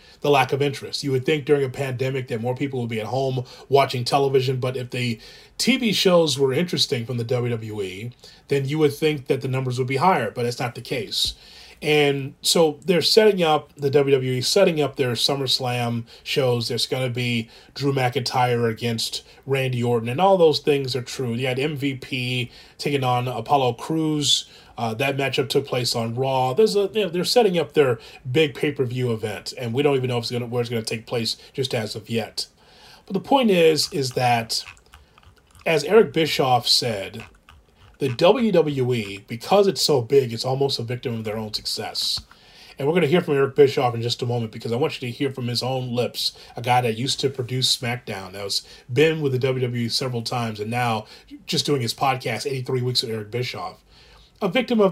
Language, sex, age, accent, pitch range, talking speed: English, male, 30-49, American, 120-150 Hz, 205 wpm